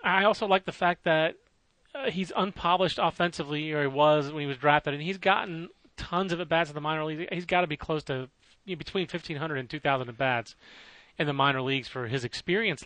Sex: male